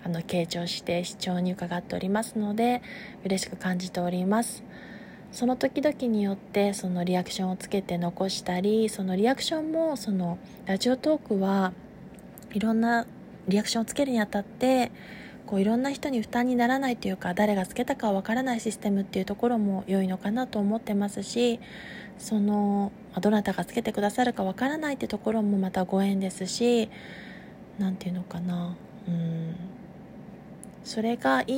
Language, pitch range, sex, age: Japanese, 190-235 Hz, female, 20-39